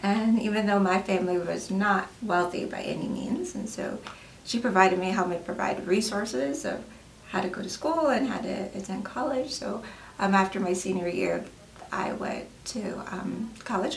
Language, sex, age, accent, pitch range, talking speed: English, female, 30-49, American, 190-235 Hz, 180 wpm